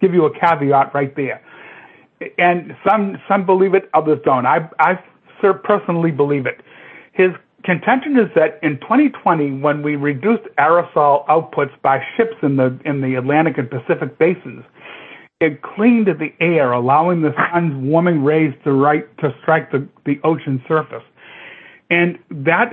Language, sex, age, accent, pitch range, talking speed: English, male, 60-79, American, 145-180 Hz, 155 wpm